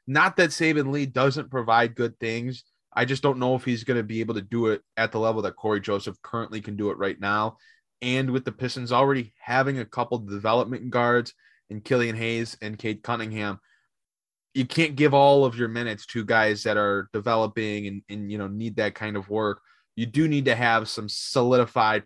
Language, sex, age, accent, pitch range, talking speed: English, male, 20-39, American, 110-135 Hz, 210 wpm